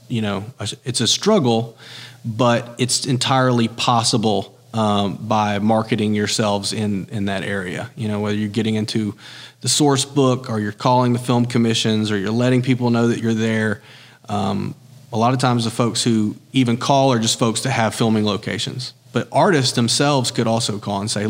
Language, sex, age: English, male, 40-59